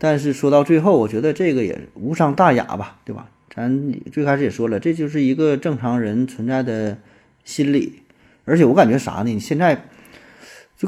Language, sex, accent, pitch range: Chinese, male, native, 115-155 Hz